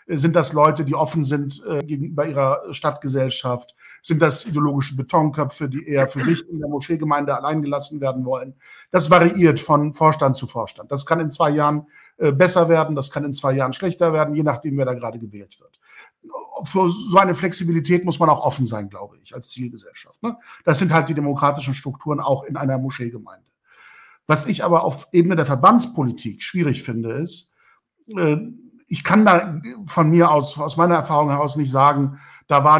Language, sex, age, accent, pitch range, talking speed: German, male, 50-69, German, 140-175 Hz, 180 wpm